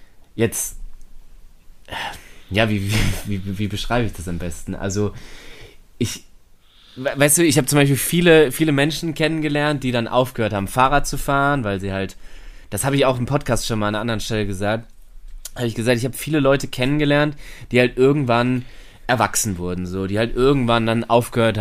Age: 20-39